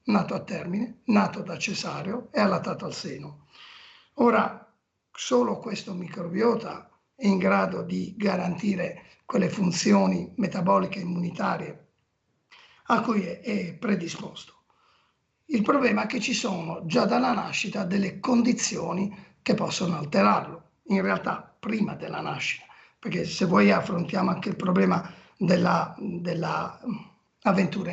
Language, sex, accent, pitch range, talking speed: Italian, male, native, 180-215 Hz, 120 wpm